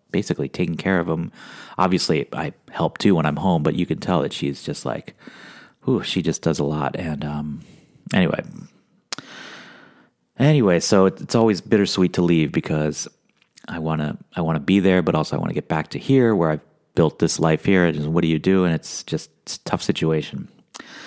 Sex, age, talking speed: male, 30-49, 210 wpm